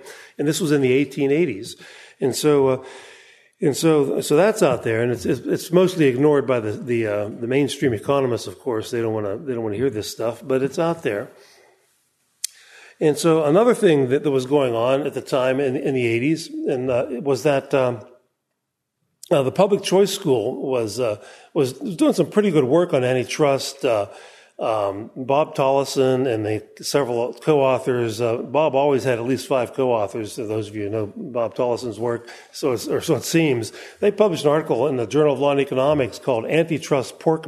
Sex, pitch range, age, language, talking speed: male, 120-150 Hz, 40-59, English, 200 wpm